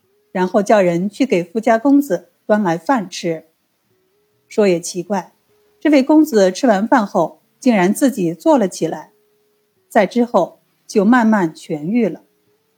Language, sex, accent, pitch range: Chinese, female, native, 175-250 Hz